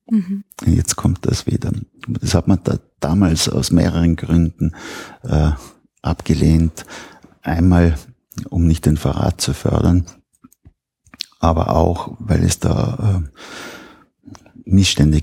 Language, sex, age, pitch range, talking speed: German, male, 50-69, 80-100 Hz, 110 wpm